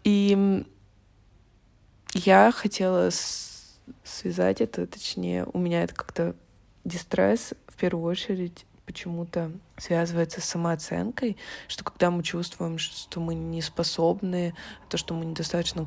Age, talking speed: 20-39, 115 wpm